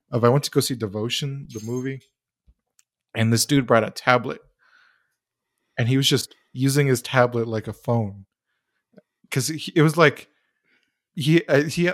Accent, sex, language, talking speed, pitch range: American, male, English, 155 wpm, 115-140 Hz